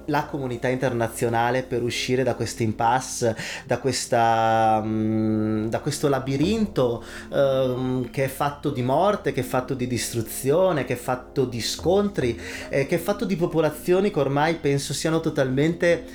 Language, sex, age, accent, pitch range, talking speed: Italian, male, 30-49, native, 120-165 Hz, 150 wpm